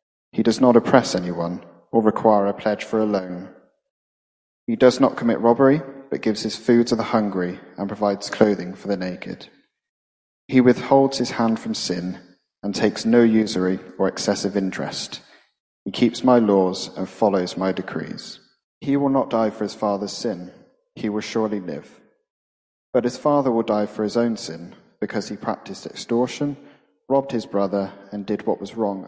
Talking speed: 175 wpm